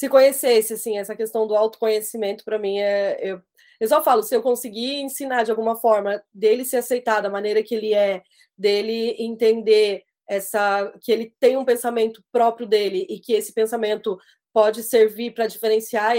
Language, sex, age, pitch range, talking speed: Portuguese, female, 20-39, 200-225 Hz, 175 wpm